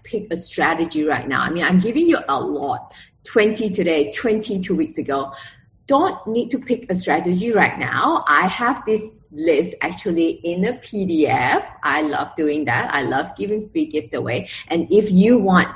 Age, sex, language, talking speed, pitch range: 20-39, female, English, 180 wpm, 155-215 Hz